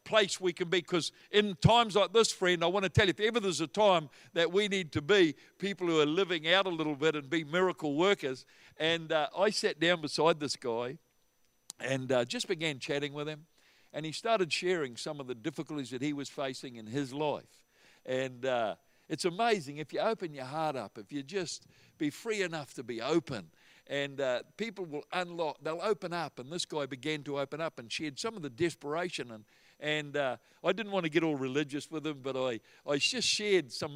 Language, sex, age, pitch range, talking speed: English, male, 60-79, 130-165 Hz, 220 wpm